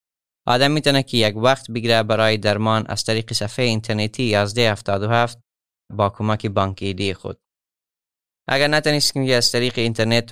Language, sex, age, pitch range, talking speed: Persian, male, 20-39, 100-120 Hz, 140 wpm